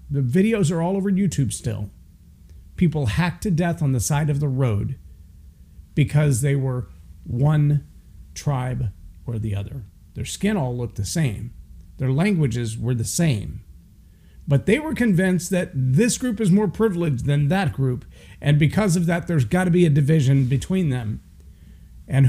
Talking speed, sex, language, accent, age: 165 wpm, male, English, American, 50-69